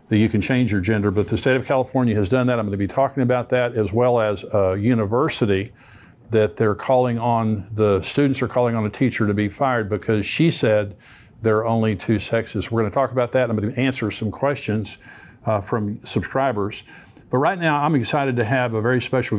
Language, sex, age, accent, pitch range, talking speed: English, male, 50-69, American, 110-130 Hz, 225 wpm